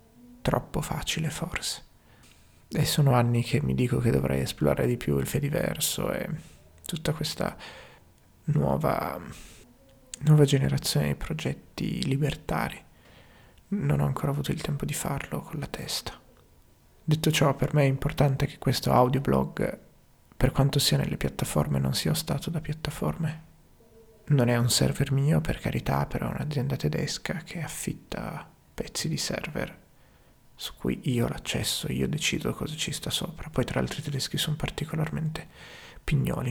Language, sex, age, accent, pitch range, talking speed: Italian, male, 30-49, native, 120-150 Hz, 150 wpm